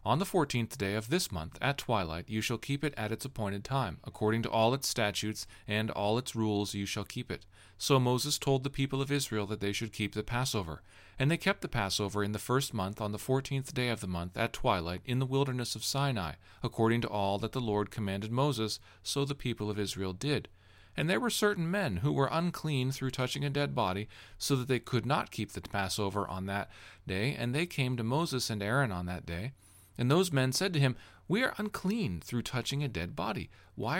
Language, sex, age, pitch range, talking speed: English, male, 40-59, 100-140 Hz, 230 wpm